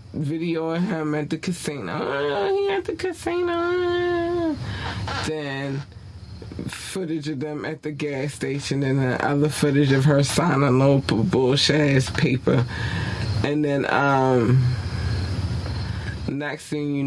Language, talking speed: English, 130 wpm